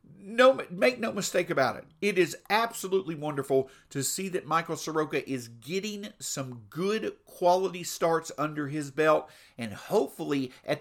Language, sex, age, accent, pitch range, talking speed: English, male, 50-69, American, 140-185 Hz, 150 wpm